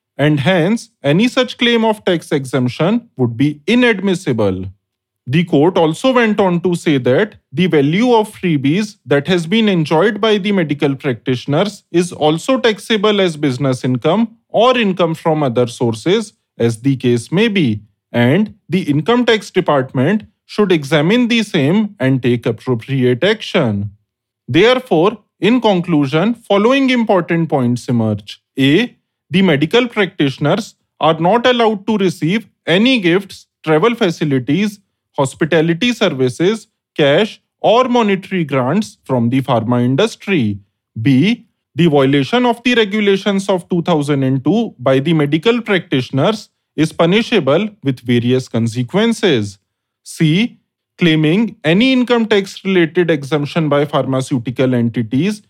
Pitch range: 135-210 Hz